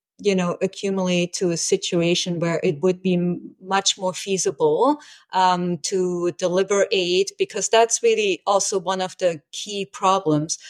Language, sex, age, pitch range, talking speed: English, female, 30-49, 165-190 Hz, 150 wpm